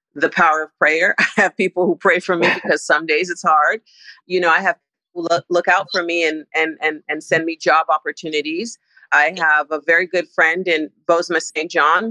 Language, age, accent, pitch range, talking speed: English, 50-69, American, 160-185 Hz, 220 wpm